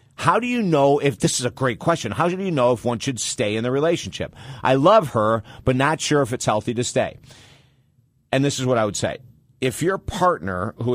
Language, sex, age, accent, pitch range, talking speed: English, male, 50-69, American, 110-135 Hz, 235 wpm